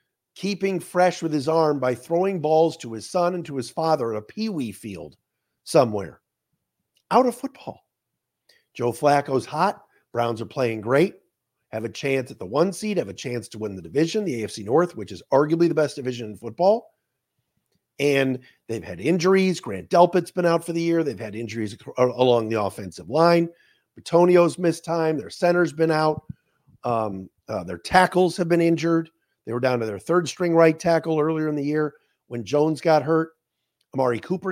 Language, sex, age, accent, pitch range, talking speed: English, male, 50-69, American, 125-175 Hz, 185 wpm